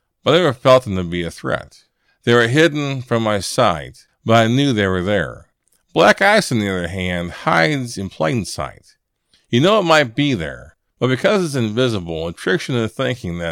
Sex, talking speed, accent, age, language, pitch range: male, 210 wpm, American, 50-69, English, 90-125 Hz